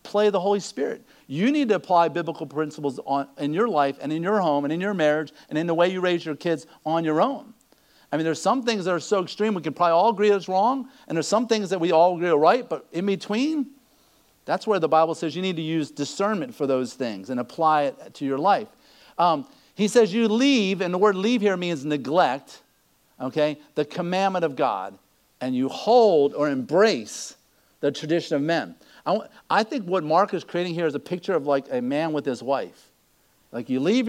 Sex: male